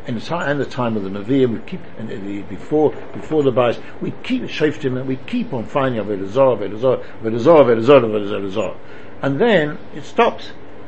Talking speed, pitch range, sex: 180 wpm, 110-140 Hz, male